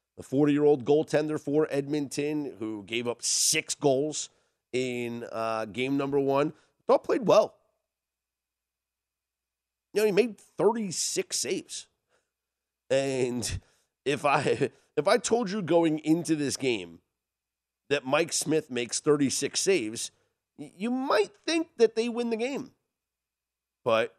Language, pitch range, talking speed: English, 95-150 Hz, 125 wpm